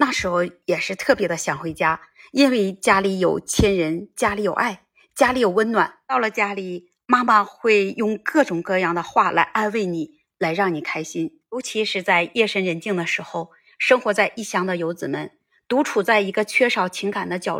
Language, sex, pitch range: Chinese, female, 180-230 Hz